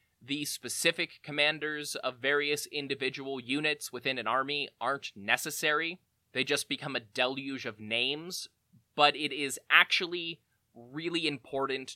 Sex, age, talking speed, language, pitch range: male, 20-39, 125 wpm, English, 115-155 Hz